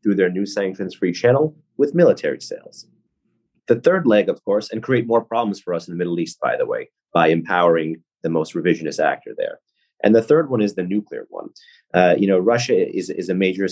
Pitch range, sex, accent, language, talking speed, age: 90-125 Hz, male, American, English, 215 wpm, 30-49